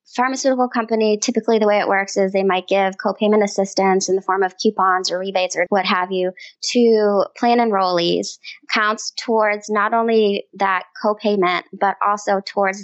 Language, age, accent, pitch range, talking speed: English, 20-39, American, 185-215 Hz, 170 wpm